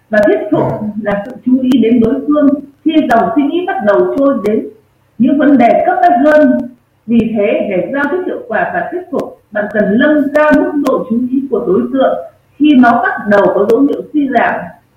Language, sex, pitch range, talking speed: Vietnamese, female, 230-300 Hz, 215 wpm